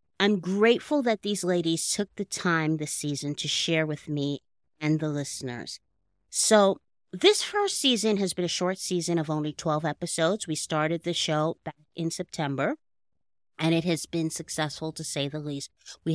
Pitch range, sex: 145-175 Hz, female